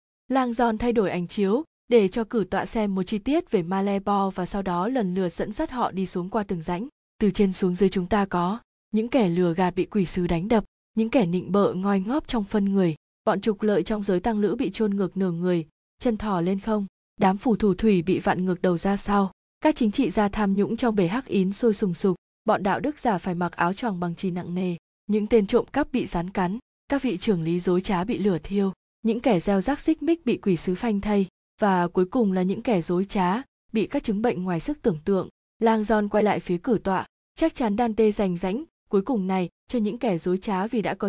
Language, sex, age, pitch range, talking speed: Vietnamese, female, 20-39, 185-225 Hz, 250 wpm